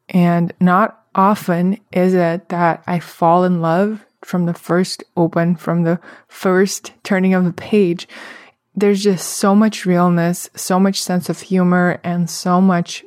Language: English